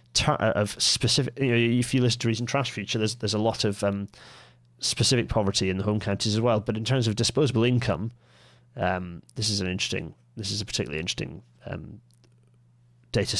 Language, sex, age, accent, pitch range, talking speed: English, male, 30-49, British, 95-115 Hz, 190 wpm